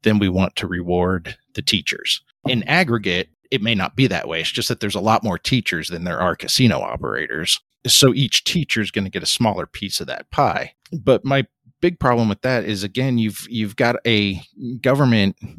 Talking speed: 210 wpm